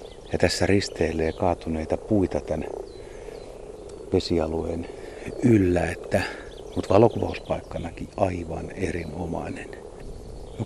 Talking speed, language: 80 wpm, Finnish